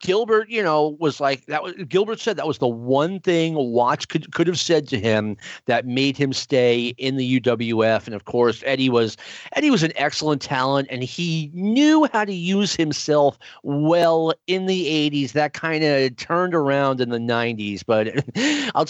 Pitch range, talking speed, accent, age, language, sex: 130-170 Hz, 185 wpm, American, 40-59, English, male